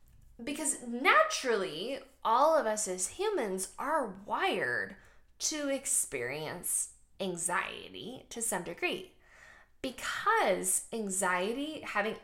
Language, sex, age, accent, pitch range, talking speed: English, female, 10-29, American, 185-285 Hz, 90 wpm